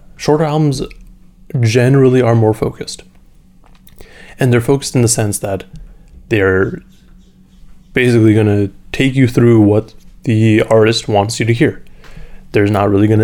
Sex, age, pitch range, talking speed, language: male, 20-39, 100-125 Hz, 140 wpm, English